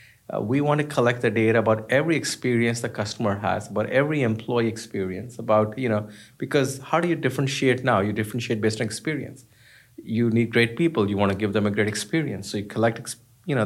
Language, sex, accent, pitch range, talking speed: English, male, Indian, 110-130 Hz, 210 wpm